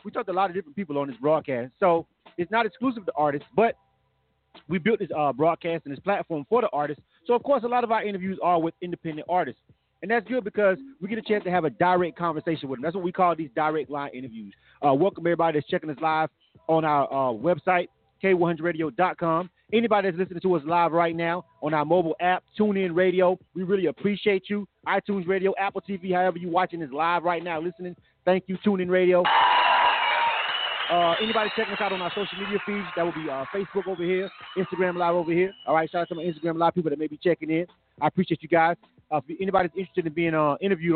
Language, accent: English, American